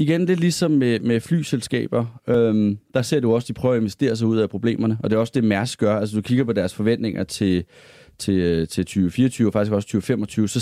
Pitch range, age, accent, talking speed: 105-125 Hz, 30-49, native, 245 wpm